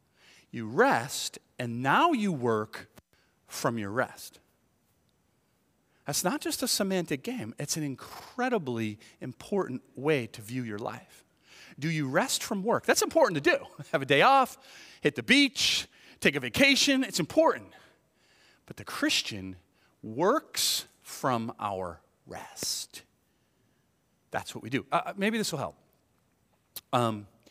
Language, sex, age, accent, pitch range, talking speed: English, male, 40-59, American, 115-180 Hz, 135 wpm